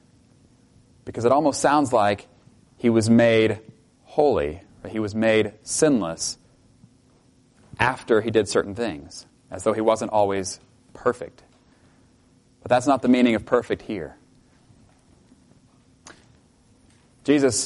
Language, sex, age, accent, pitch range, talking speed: English, male, 30-49, American, 110-130 Hz, 115 wpm